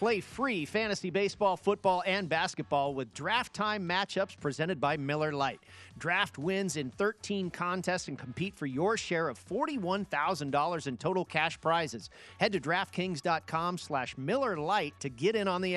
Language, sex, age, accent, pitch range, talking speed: English, male, 40-59, American, 140-175 Hz, 150 wpm